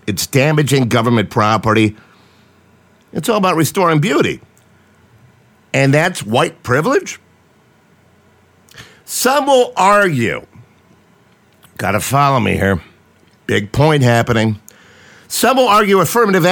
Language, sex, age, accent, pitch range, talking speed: English, male, 50-69, American, 120-185 Hz, 100 wpm